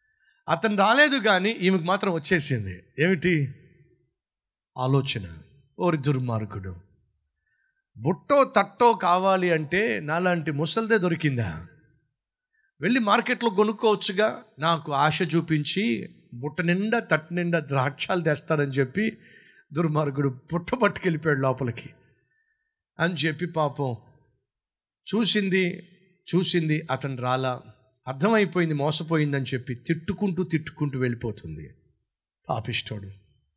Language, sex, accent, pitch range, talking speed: Telugu, male, native, 130-200 Hz, 85 wpm